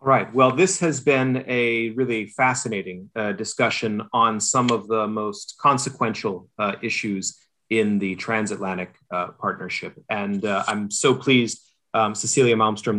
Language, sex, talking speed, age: English, male, 145 wpm, 30-49